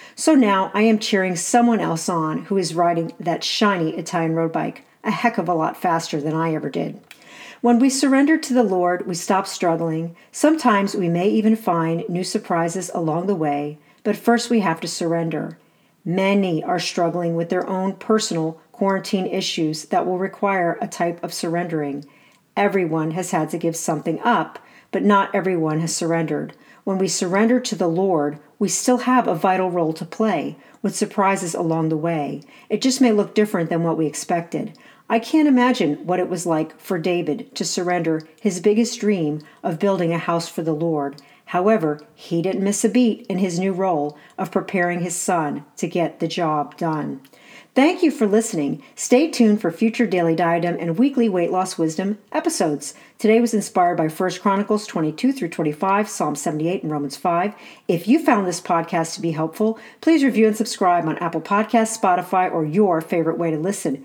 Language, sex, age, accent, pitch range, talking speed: English, female, 50-69, American, 165-215 Hz, 185 wpm